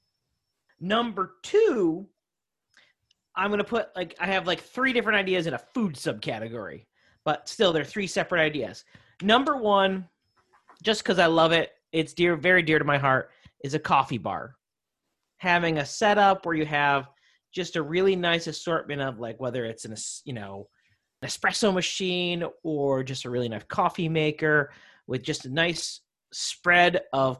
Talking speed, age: 160 wpm, 30-49